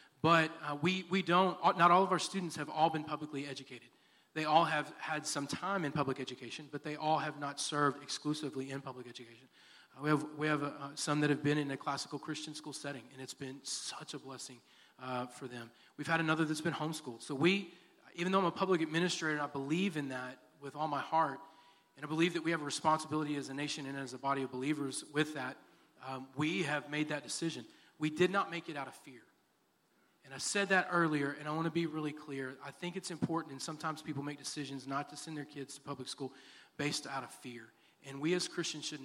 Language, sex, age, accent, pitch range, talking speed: English, male, 30-49, American, 135-160 Hz, 235 wpm